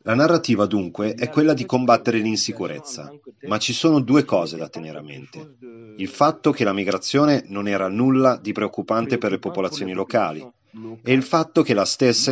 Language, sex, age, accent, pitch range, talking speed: Italian, male, 40-59, native, 100-125 Hz, 180 wpm